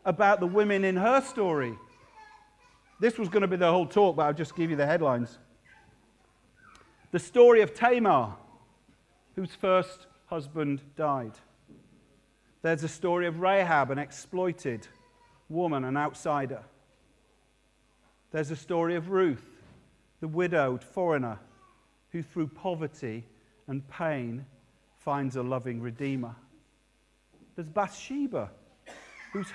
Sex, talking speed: male, 120 wpm